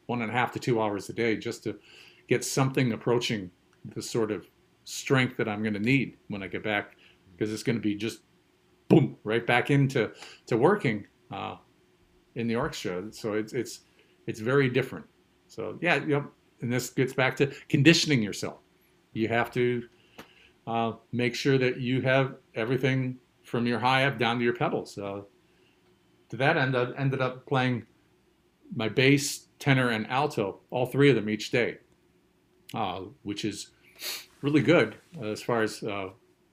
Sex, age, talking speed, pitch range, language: male, 50-69, 170 wpm, 110-140 Hz, English